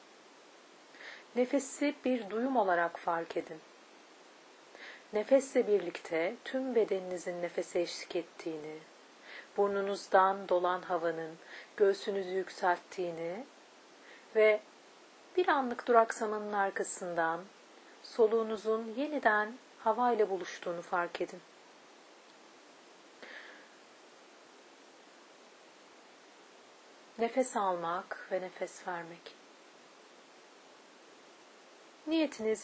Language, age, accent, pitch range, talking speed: Turkish, 40-59, native, 175-235 Hz, 65 wpm